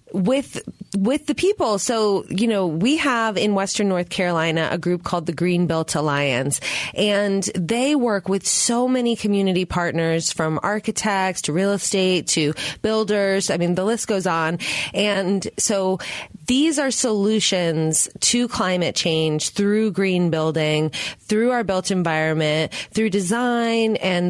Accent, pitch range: American, 175-225 Hz